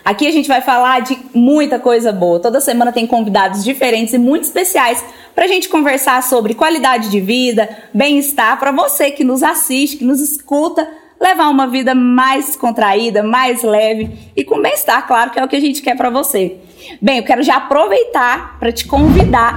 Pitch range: 235-300 Hz